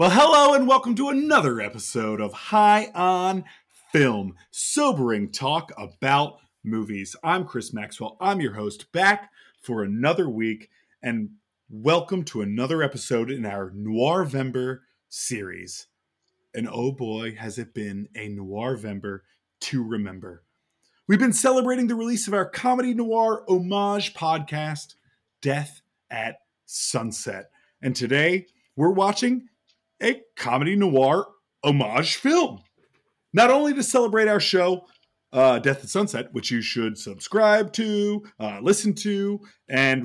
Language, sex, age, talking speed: English, male, 30-49, 130 wpm